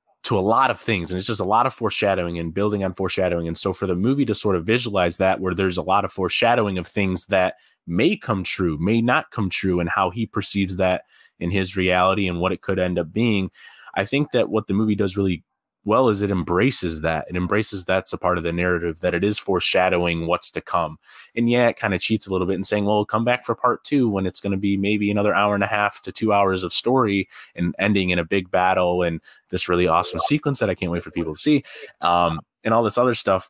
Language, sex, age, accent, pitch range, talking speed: English, male, 20-39, American, 90-105 Hz, 260 wpm